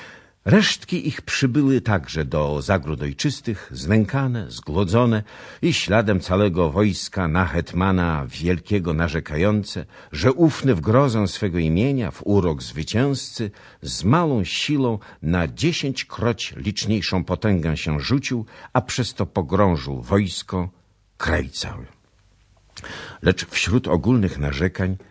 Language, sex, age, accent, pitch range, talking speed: Polish, male, 50-69, native, 85-115 Hz, 110 wpm